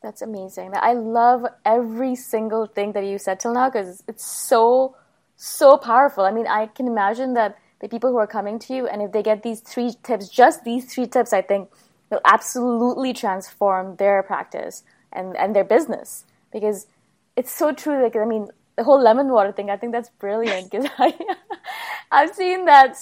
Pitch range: 200-245 Hz